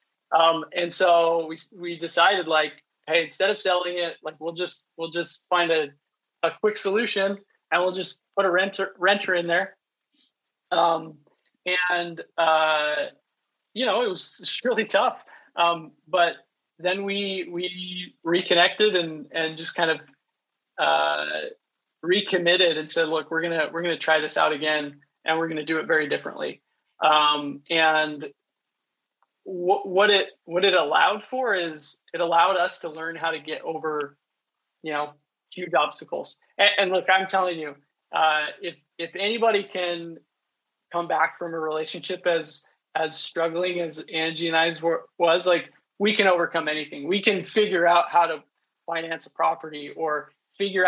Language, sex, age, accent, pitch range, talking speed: English, male, 20-39, American, 155-180 Hz, 160 wpm